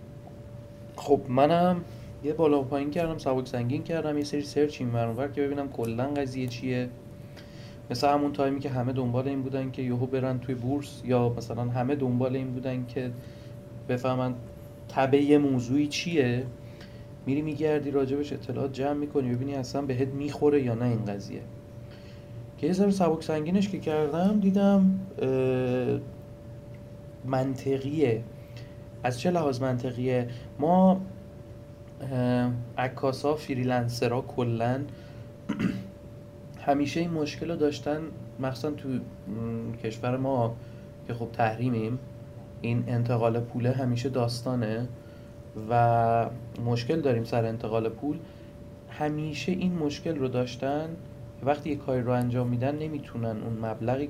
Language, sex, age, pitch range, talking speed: Persian, male, 30-49, 115-145 Hz, 125 wpm